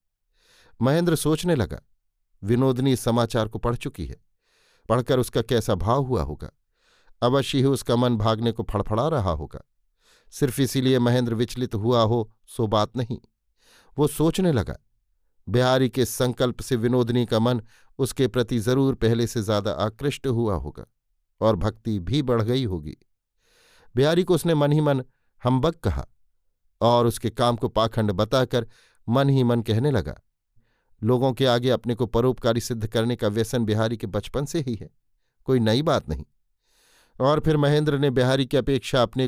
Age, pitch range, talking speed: 50-69, 110-130 Hz, 160 wpm